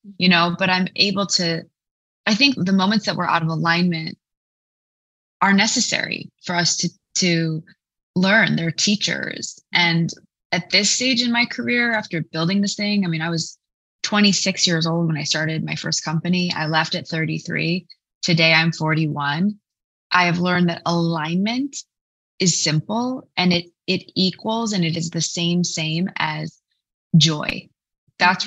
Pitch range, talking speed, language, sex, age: 160-185 Hz, 165 wpm, English, female, 20-39